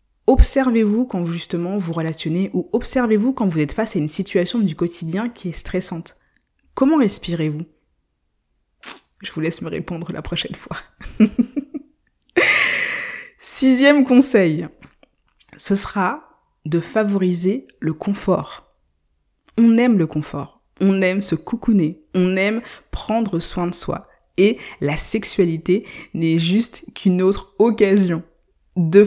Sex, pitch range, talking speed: female, 165-225 Hz, 130 wpm